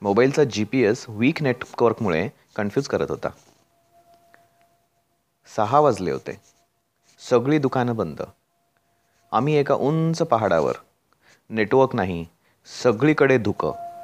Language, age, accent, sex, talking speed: Marathi, 30-49, native, male, 75 wpm